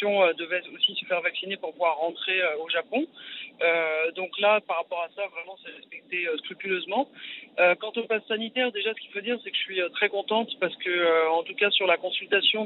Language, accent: French, French